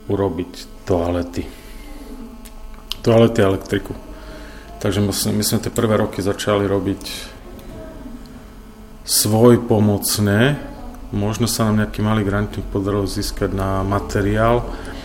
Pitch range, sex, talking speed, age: 100-115 Hz, male, 110 wpm, 30-49